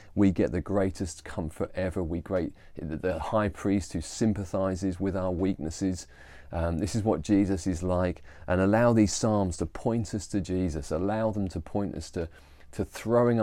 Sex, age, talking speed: male, 30-49, 185 wpm